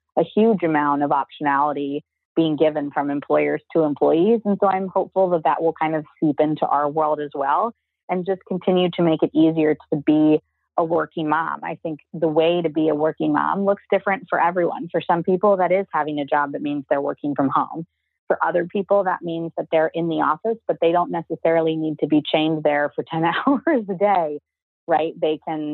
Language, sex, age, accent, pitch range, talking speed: English, female, 30-49, American, 150-175 Hz, 215 wpm